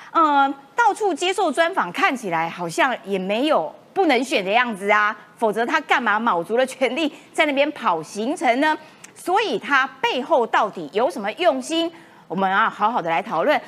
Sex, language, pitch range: female, Chinese, 215-330 Hz